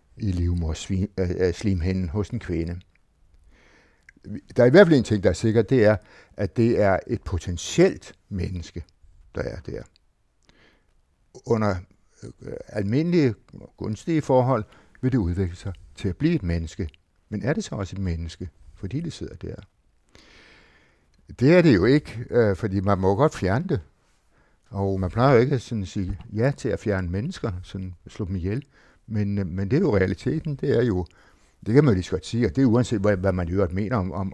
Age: 60-79